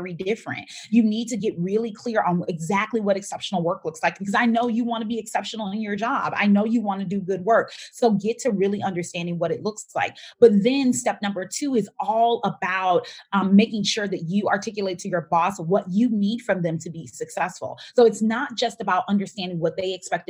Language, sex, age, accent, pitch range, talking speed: English, female, 30-49, American, 180-220 Hz, 225 wpm